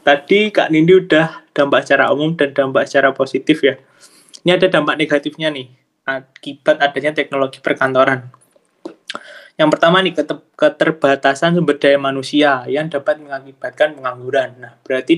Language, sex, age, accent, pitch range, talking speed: Indonesian, male, 20-39, native, 135-155 Hz, 135 wpm